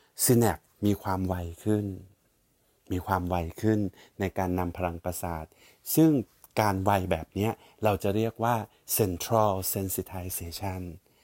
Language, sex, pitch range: Thai, male, 95-115 Hz